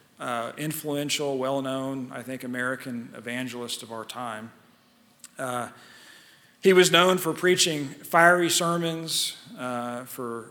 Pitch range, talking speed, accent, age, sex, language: 120-140 Hz, 115 wpm, American, 40-59, male, English